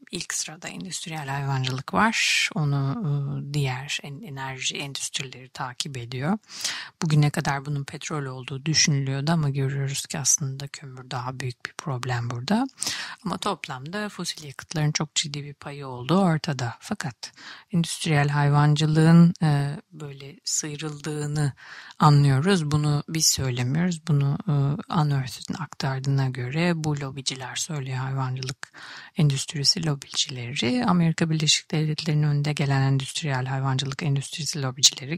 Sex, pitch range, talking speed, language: female, 135-160 Hz, 115 wpm, Turkish